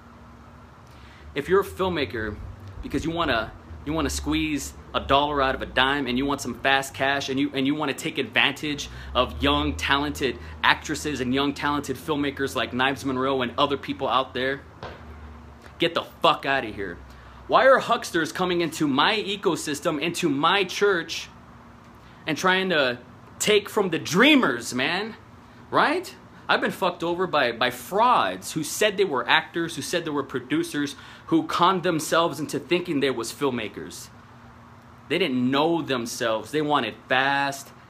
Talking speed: 165 wpm